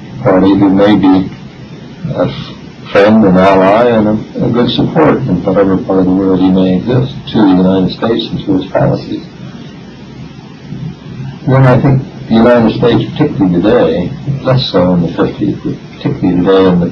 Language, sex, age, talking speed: Persian, male, 60-79, 170 wpm